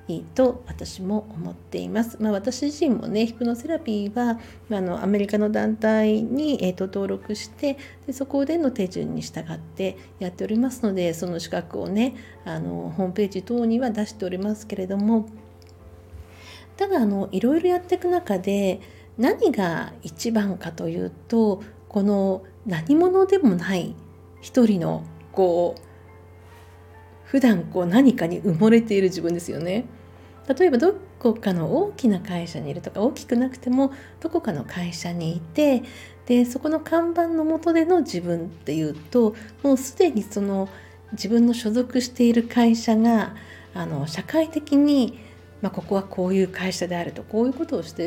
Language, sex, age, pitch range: Japanese, female, 50-69, 180-250 Hz